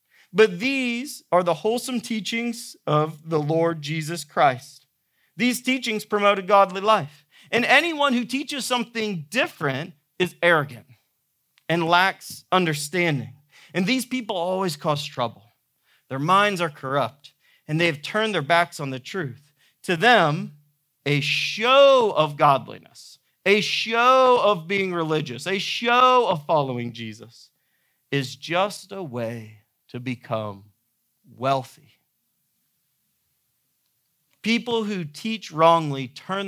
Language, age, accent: English, 40-59, American